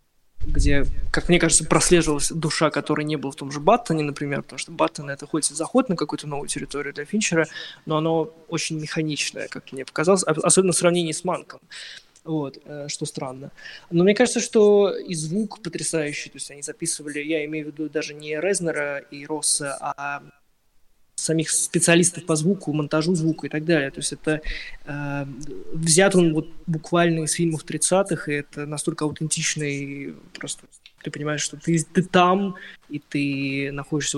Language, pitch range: Ukrainian, 145-170 Hz